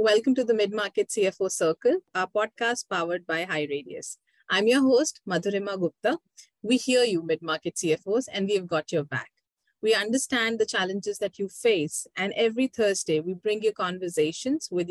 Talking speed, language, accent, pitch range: 170 wpm, English, Indian, 170-215 Hz